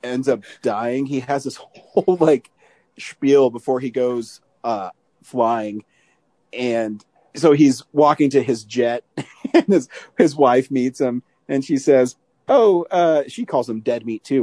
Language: English